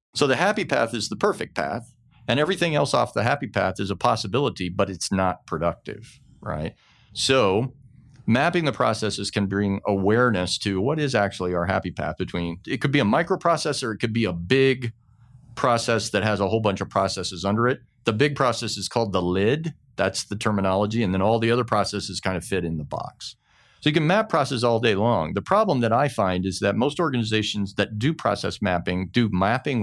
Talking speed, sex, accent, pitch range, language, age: 205 wpm, male, American, 95-125 Hz, English, 40-59